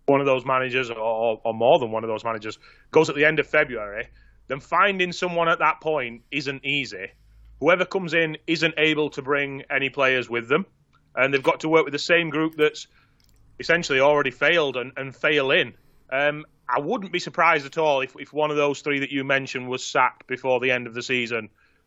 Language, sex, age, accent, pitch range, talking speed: English, male, 30-49, British, 130-155 Hz, 215 wpm